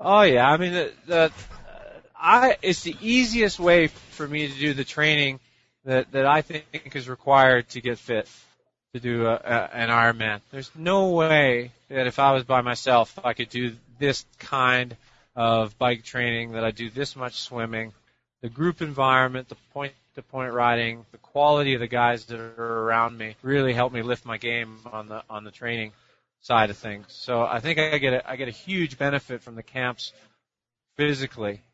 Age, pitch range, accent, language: 30-49, 120-140 Hz, American, English